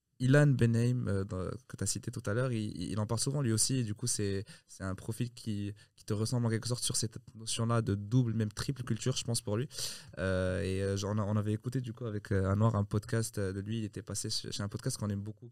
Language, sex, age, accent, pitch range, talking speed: French, male, 20-39, French, 100-120 Hz, 260 wpm